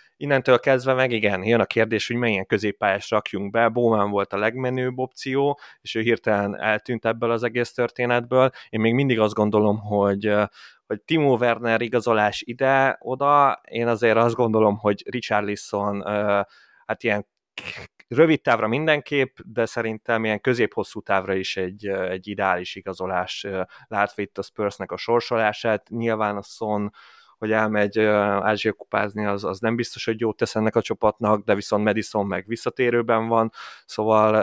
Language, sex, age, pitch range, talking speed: Hungarian, male, 20-39, 105-120 Hz, 150 wpm